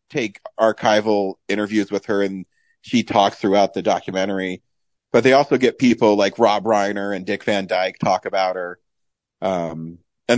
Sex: male